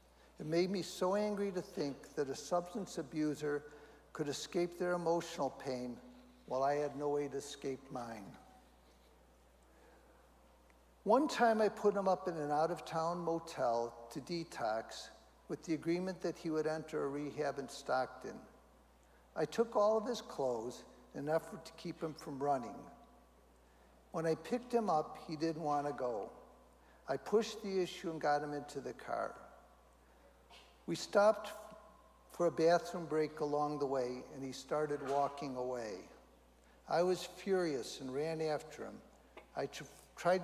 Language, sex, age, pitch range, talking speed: English, male, 60-79, 135-175 Hz, 155 wpm